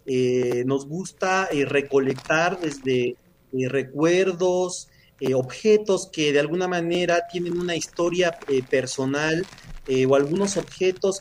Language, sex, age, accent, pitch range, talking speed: Spanish, male, 40-59, Mexican, 135-175 Hz, 125 wpm